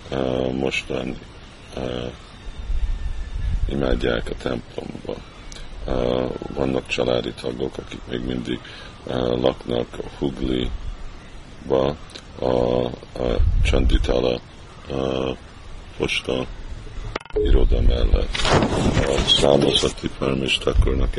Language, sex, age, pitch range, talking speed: Hungarian, male, 50-69, 65-70 Hz, 90 wpm